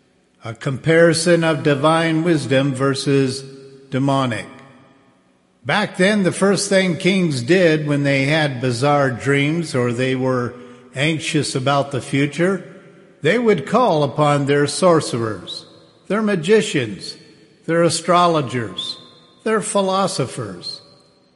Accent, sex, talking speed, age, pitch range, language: American, male, 105 wpm, 50-69, 130-170 Hz, English